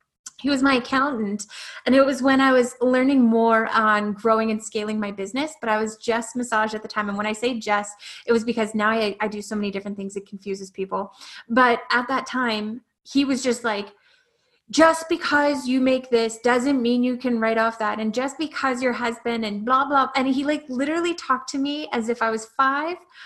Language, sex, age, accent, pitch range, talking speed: English, female, 20-39, American, 220-270 Hz, 220 wpm